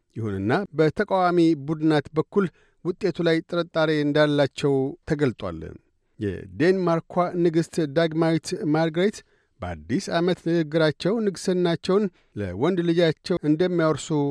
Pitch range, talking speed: 155-175 Hz, 85 wpm